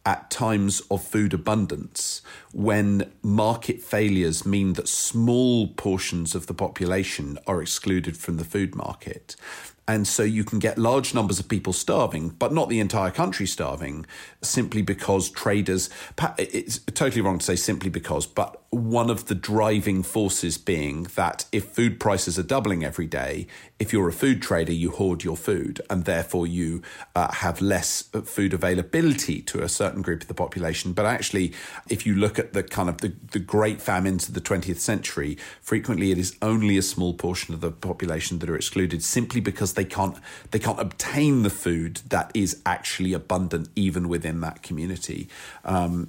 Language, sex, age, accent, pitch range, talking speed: English, male, 40-59, British, 90-110 Hz, 175 wpm